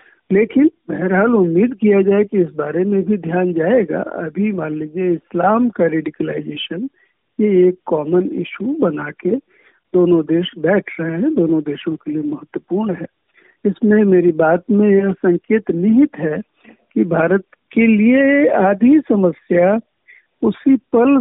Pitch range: 170-250 Hz